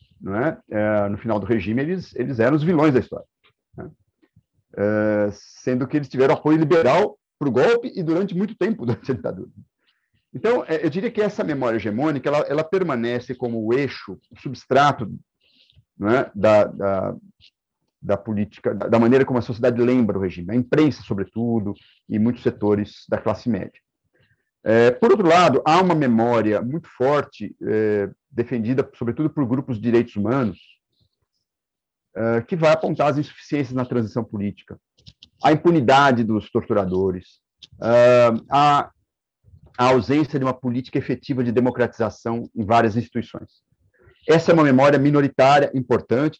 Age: 50-69